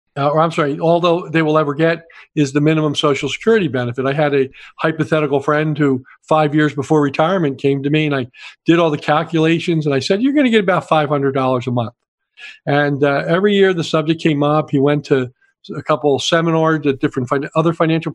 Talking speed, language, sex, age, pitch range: 215 wpm, English, male, 50-69, 140-165 Hz